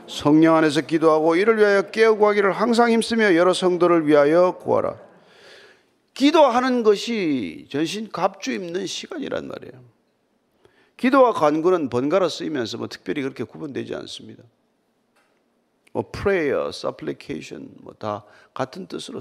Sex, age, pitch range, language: male, 40-59, 170-275 Hz, Korean